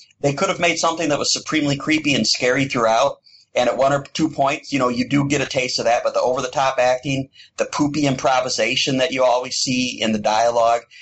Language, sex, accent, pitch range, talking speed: English, male, American, 115-140 Hz, 225 wpm